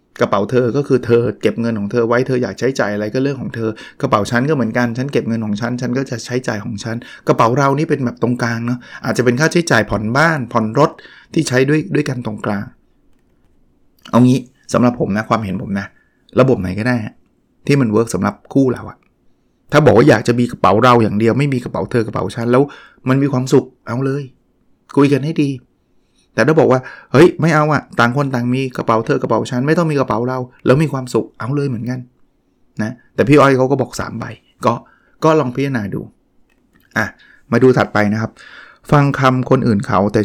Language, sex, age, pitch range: Thai, male, 20-39, 115-140 Hz